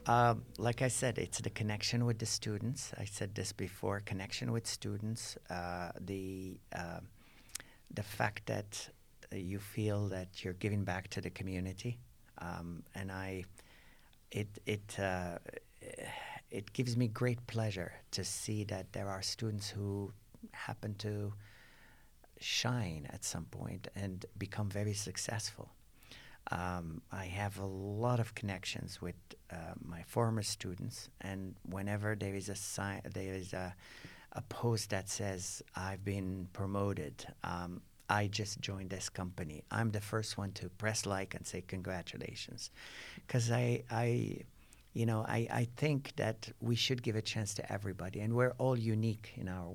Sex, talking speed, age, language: male, 155 wpm, 60-79, Czech